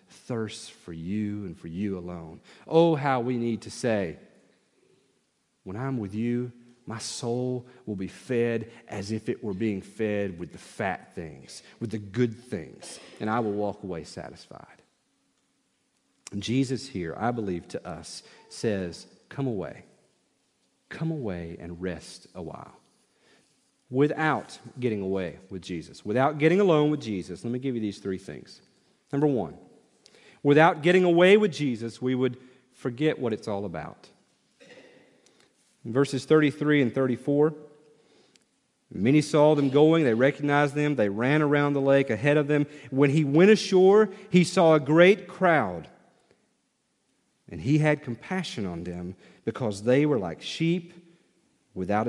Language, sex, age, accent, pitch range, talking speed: English, male, 40-59, American, 105-150 Hz, 150 wpm